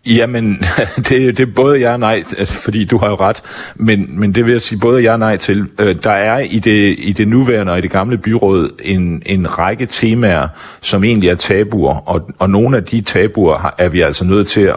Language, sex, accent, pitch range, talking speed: Danish, male, native, 85-110 Hz, 230 wpm